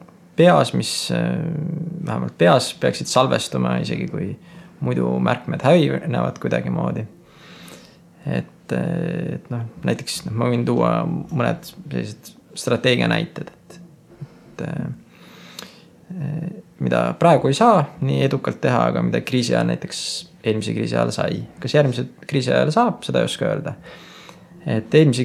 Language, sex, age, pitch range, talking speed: English, male, 20-39, 120-170 Hz, 125 wpm